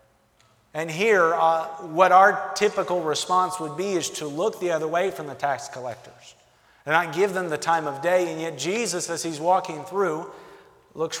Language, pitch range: English, 150-190 Hz